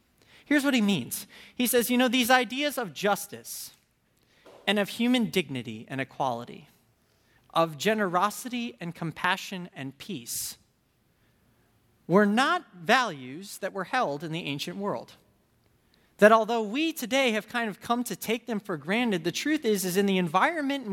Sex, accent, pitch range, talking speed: male, American, 180-250 Hz, 160 wpm